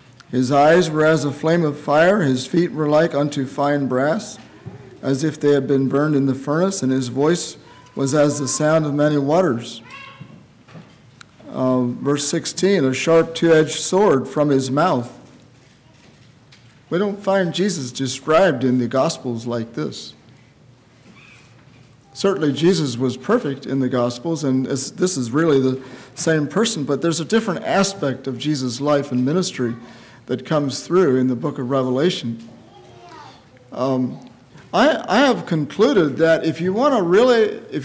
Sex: male